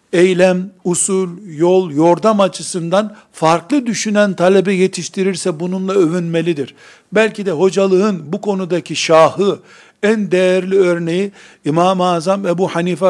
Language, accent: Turkish, native